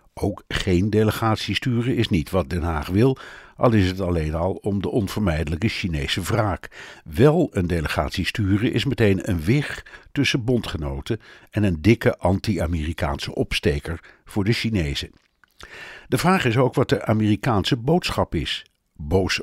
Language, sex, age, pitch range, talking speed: Dutch, male, 60-79, 90-120 Hz, 150 wpm